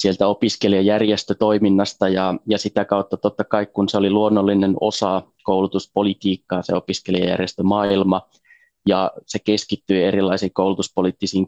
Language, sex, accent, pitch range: Finnish, male, native, 95-105 Hz